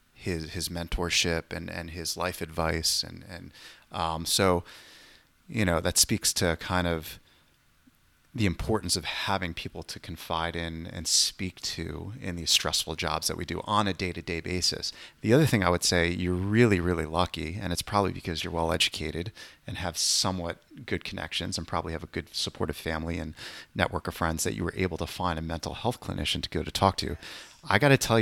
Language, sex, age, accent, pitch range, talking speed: English, male, 30-49, American, 85-100 Hz, 195 wpm